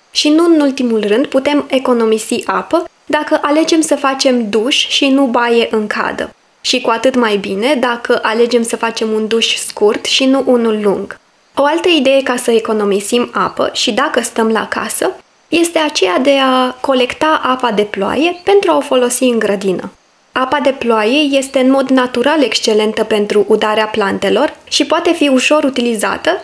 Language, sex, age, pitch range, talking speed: Romanian, female, 20-39, 220-285 Hz, 175 wpm